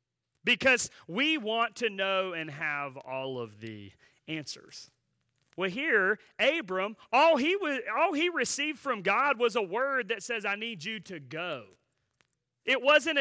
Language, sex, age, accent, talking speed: English, male, 30-49, American, 145 wpm